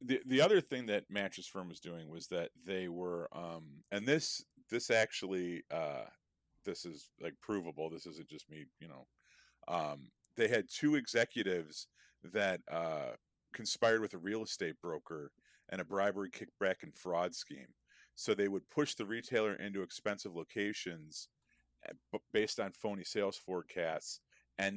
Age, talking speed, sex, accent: 40-59, 155 wpm, male, American